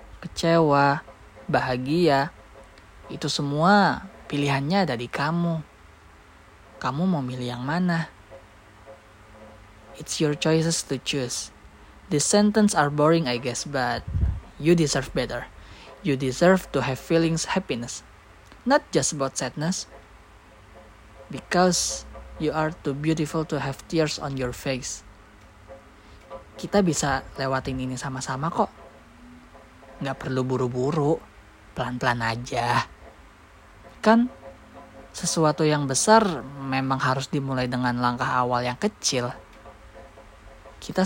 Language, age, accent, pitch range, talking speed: Indonesian, 20-39, native, 105-150 Hz, 105 wpm